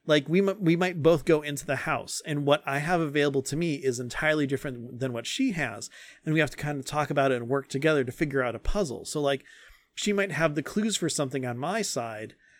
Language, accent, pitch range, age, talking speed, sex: English, American, 130-160 Hz, 30-49, 250 wpm, male